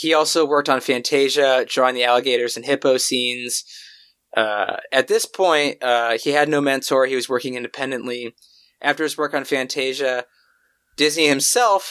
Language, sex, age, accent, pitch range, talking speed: English, male, 20-39, American, 125-155 Hz, 155 wpm